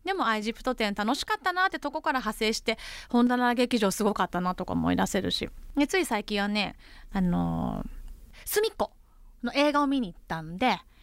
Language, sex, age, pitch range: Japanese, female, 20-39, 200-275 Hz